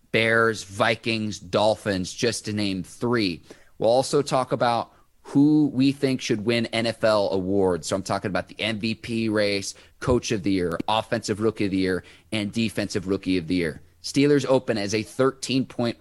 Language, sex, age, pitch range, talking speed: English, male, 30-49, 95-120 Hz, 170 wpm